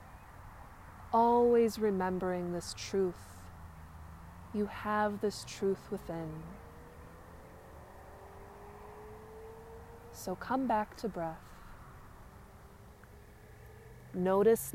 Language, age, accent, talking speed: English, 20-39, American, 60 wpm